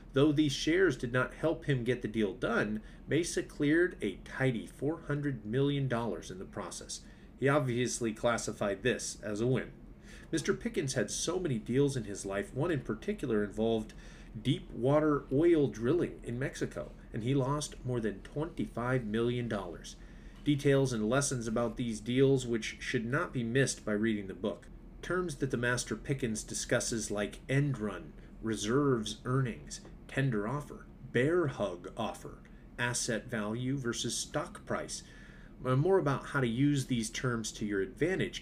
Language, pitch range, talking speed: English, 110-145 Hz, 155 wpm